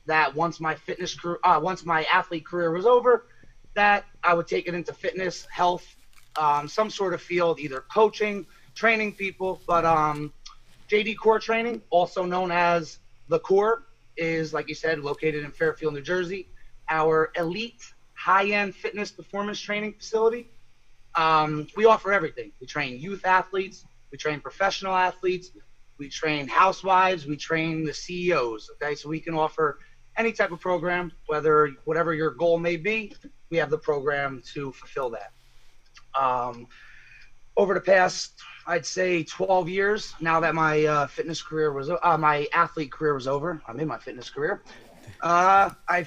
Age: 30-49